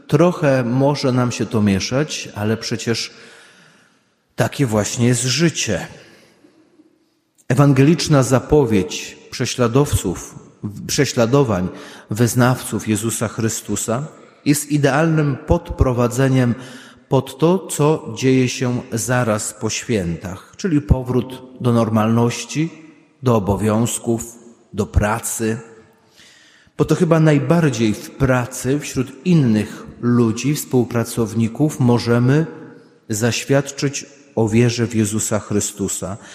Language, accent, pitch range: Polish, native, 115-145 Hz